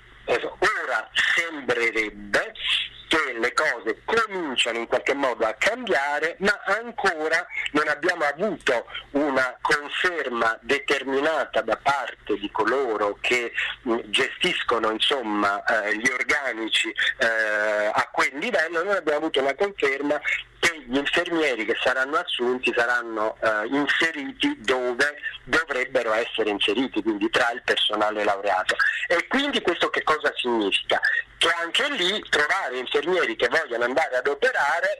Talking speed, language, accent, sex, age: 115 wpm, Italian, native, male, 40-59